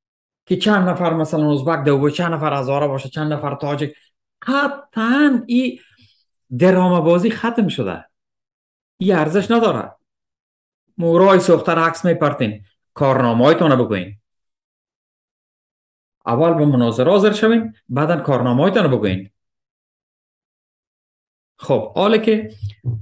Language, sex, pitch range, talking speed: Persian, male, 115-175 Hz, 105 wpm